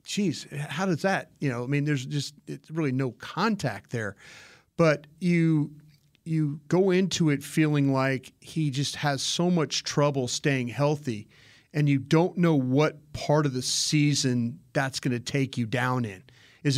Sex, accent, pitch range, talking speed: male, American, 130-155 Hz, 170 wpm